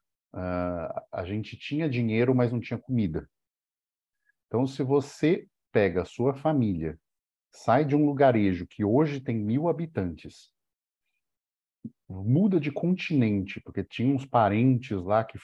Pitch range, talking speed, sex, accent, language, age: 105-150 Hz, 130 wpm, male, Brazilian, Portuguese, 50-69